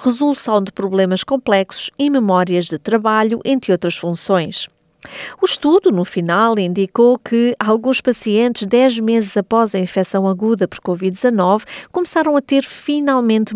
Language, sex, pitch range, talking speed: Portuguese, female, 185-240 Hz, 135 wpm